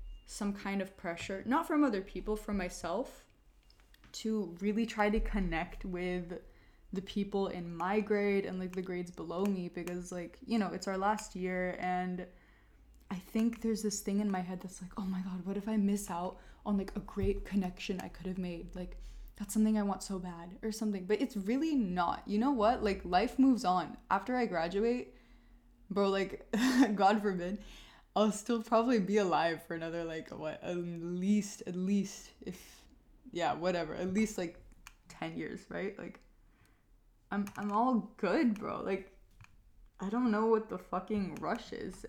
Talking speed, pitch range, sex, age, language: 180 wpm, 180-215 Hz, female, 20-39, English